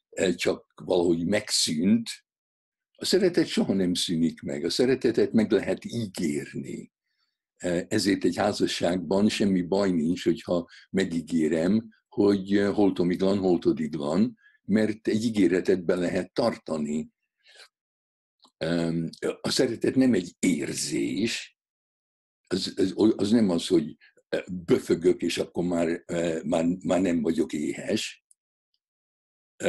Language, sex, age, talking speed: Hungarian, male, 60-79, 110 wpm